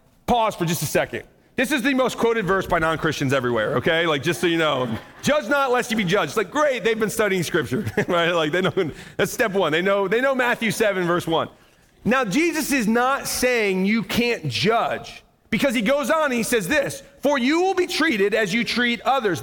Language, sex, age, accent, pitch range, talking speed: English, male, 30-49, American, 175-245 Hz, 225 wpm